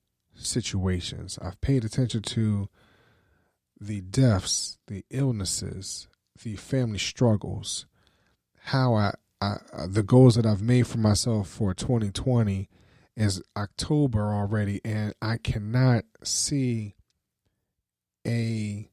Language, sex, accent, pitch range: English, male, American, 100-120 Hz